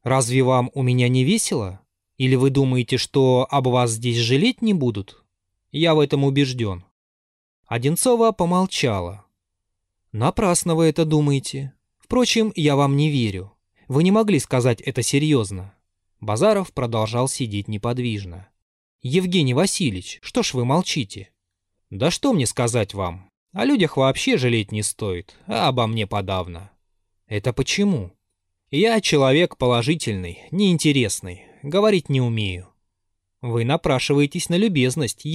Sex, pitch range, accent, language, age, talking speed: male, 100-150 Hz, native, Russian, 20-39, 125 wpm